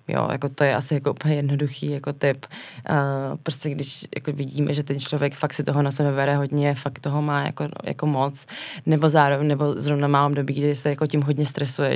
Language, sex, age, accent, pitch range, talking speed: Czech, female, 20-39, native, 140-150 Hz, 215 wpm